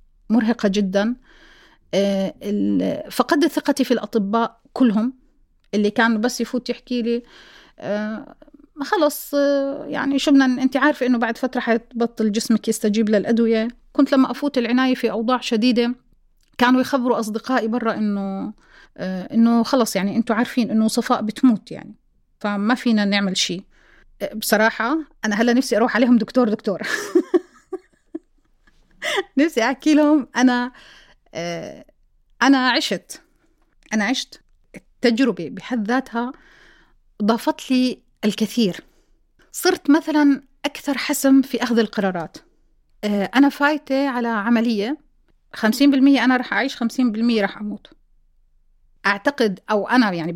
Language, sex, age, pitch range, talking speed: Arabic, female, 30-49, 220-275 Hz, 115 wpm